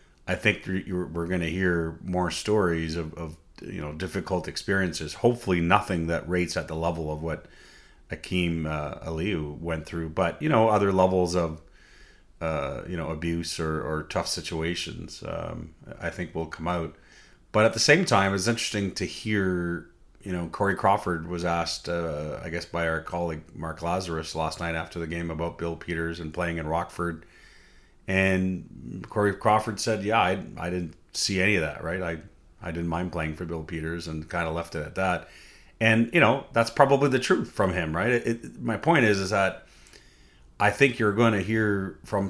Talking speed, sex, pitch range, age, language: 190 wpm, male, 85-100 Hz, 30-49, English